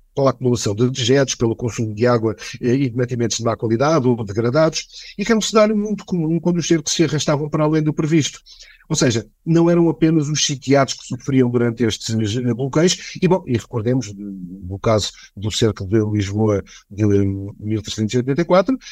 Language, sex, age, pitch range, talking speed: Portuguese, male, 50-69, 115-160 Hz, 175 wpm